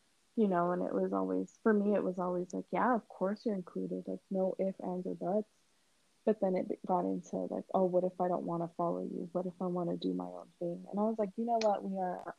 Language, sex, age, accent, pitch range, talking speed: English, female, 20-39, American, 175-210 Hz, 275 wpm